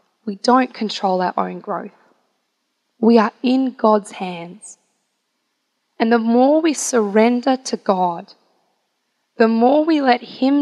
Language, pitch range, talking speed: English, 200-250 Hz, 130 wpm